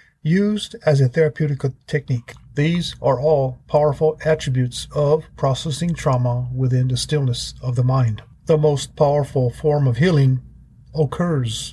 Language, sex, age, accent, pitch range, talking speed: English, male, 50-69, American, 125-150 Hz, 135 wpm